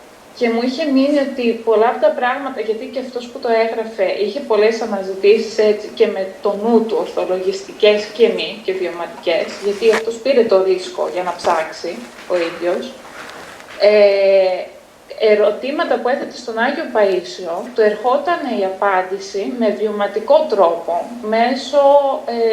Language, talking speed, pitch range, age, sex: Greek, 145 wpm, 205-255 Hz, 20-39, female